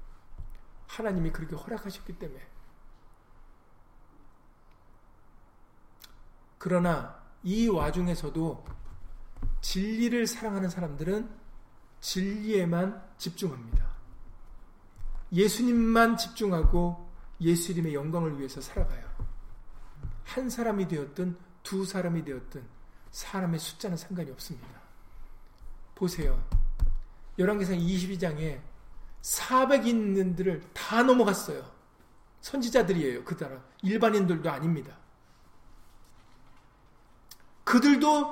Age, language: 40-59, Korean